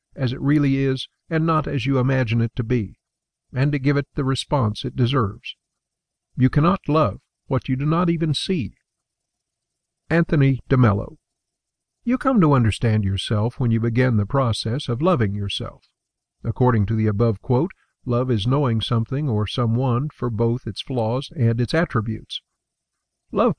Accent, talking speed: American, 160 wpm